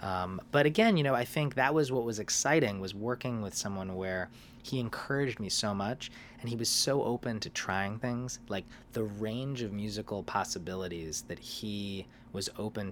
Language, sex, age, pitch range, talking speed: English, male, 20-39, 105-135 Hz, 185 wpm